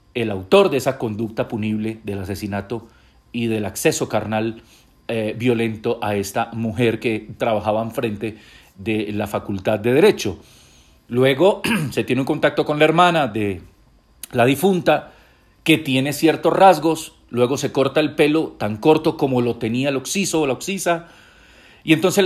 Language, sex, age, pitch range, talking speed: Spanish, male, 40-59, 110-140 Hz, 155 wpm